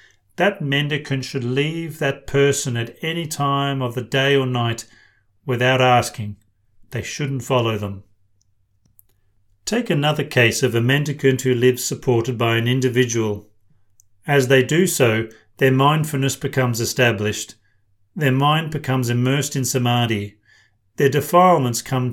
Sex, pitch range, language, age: male, 105-140 Hz, English, 40-59